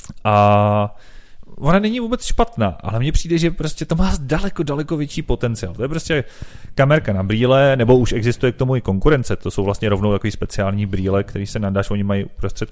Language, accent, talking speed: Czech, native, 200 wpm